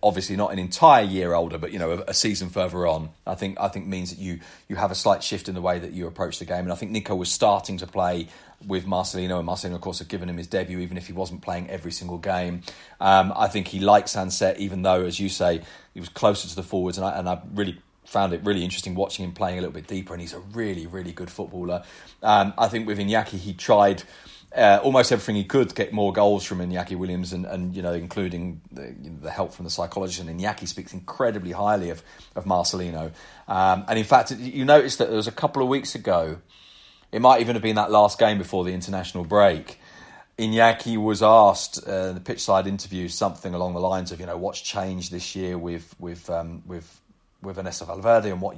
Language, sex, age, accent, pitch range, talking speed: English, male, 30-49, British, 90-105 Hz, 240 wpm